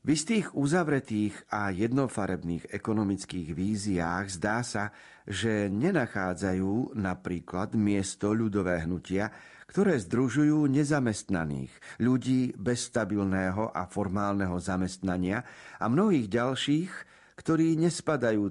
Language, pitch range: Slovak, 95-135 Hz